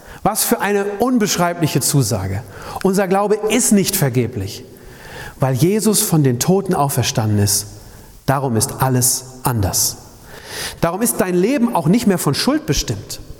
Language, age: German, 40-59